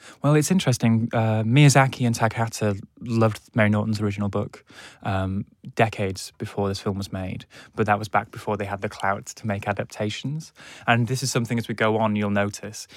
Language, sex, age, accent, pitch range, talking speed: English, male, 20-39, British, 100-115 Hz, 190 wpm